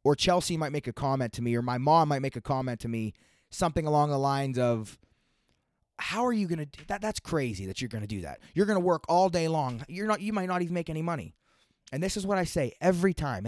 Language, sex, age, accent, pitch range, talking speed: English, male, 20-39, American, 135-180 Hz, 265 wpm